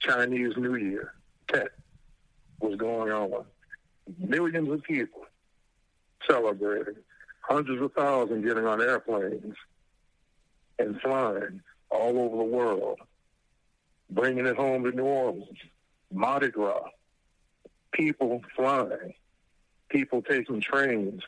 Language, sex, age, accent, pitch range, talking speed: English, male, 60-79, American, 110-140 Hz, 100 wpm